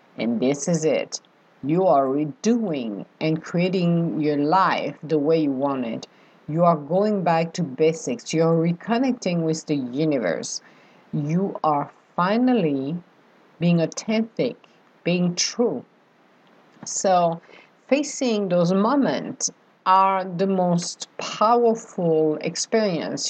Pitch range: 155-200 Hz